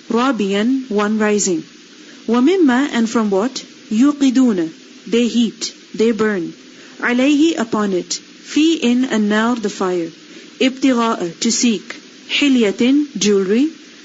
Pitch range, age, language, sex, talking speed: 210-290 Hz, 40-59, English, female, 105 wpm